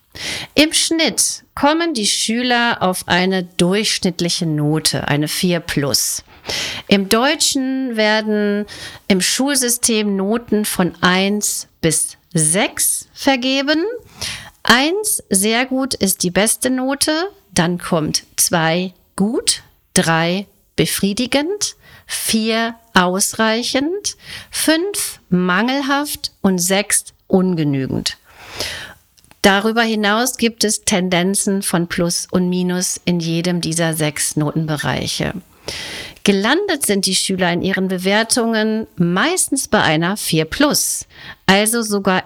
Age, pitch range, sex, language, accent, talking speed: 40-59, 180-245 Hz, female, German, German, 100 wpm